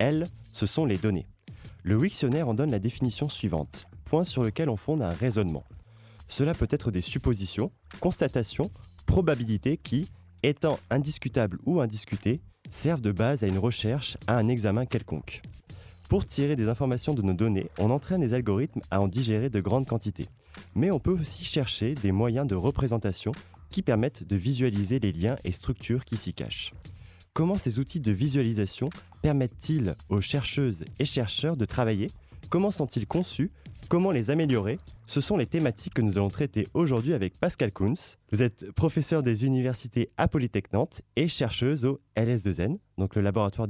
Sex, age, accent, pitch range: male, 20-39, French, 100-140 Hz